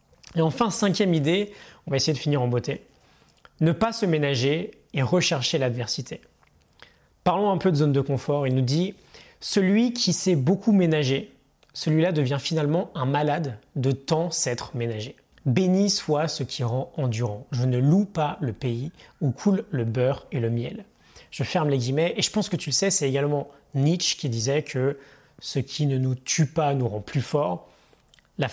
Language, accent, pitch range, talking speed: French, French, 135-175 Hz, 195 wpm